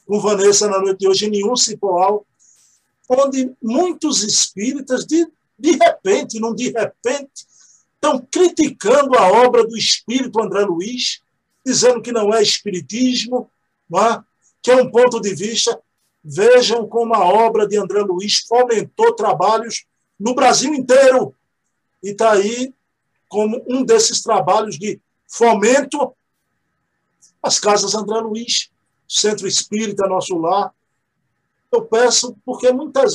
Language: Portuguese